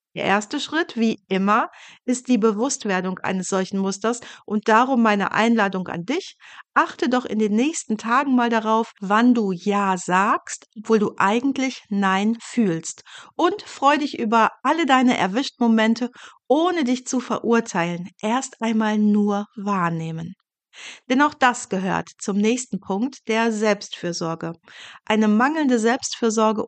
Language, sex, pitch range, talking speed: German, female, 200-250 Hz, 135 wpm